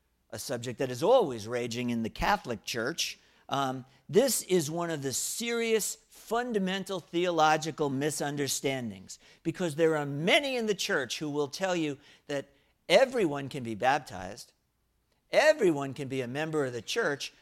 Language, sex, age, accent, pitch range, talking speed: English, male, 50-69, American, 135-190 Hz, 150 wpm